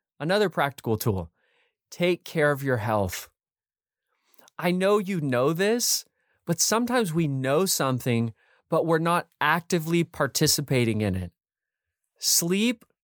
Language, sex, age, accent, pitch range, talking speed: English, male, 30-49, American, 135-180 Hz, 120 wpm